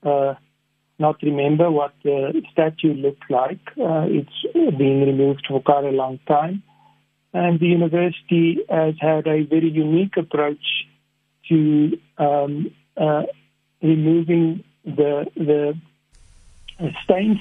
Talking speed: 115 wpm